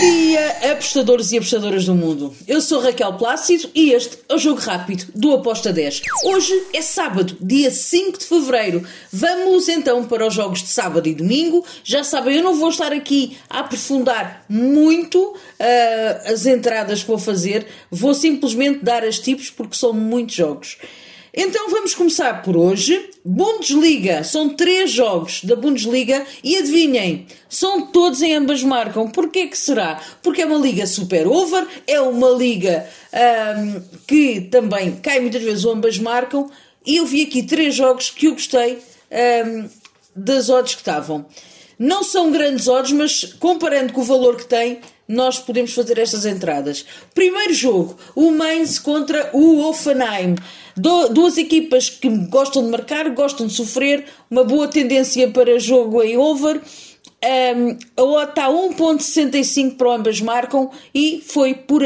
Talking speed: 155 wpm